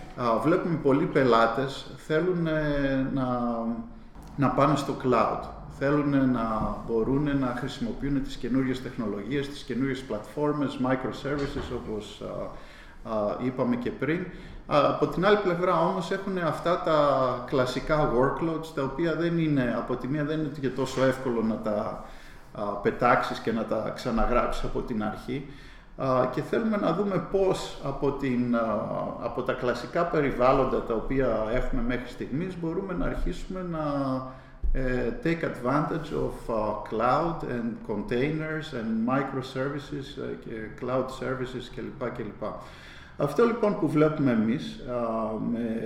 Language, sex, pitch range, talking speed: Greek, male, 120-150 Hz, 140 wpm